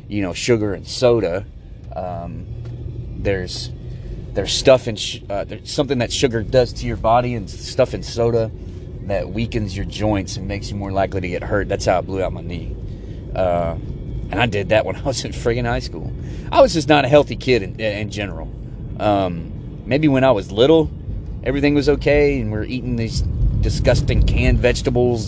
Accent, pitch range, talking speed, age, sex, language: American, 105-130 Hz, 195 wpm, 30-49, male, English